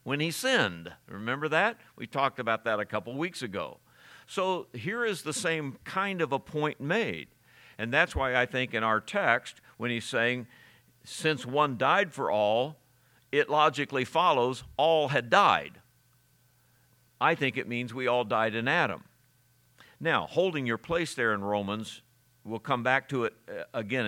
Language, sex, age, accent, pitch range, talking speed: English, male, 60-79, American, 120-160 Hz, 170 wpm